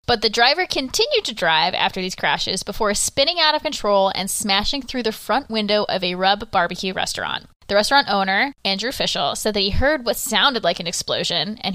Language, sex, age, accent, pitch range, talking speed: English, female, 10-29, American, 190-245 Hz, 205 wpm